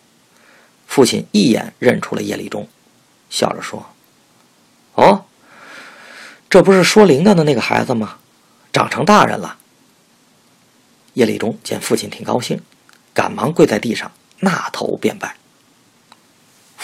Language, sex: Chinese, male